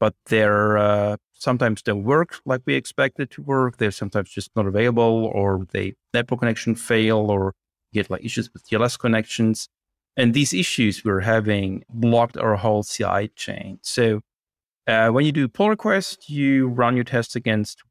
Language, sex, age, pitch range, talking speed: English, male, 30-49, 105-125 Hz, 170 wpm